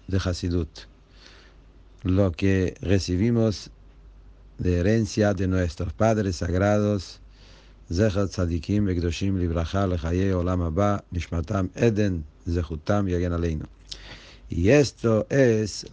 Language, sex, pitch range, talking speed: English, male, 90-110 Hz, 90 wpm